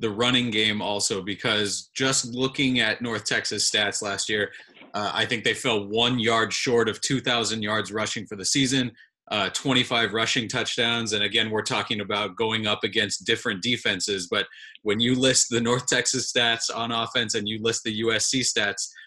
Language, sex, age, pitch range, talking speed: English, male, 20-39, 110-130 Hz, 185 wpm